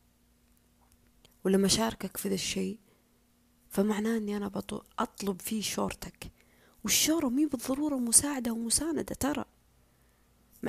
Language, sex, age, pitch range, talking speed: Arabic, female, 20-39, 180-220 Hz, 100 wpm